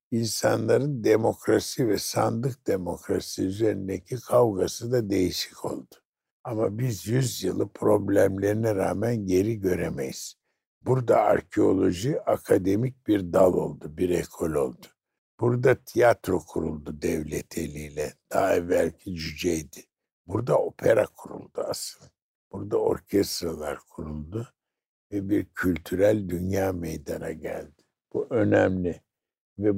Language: Turkish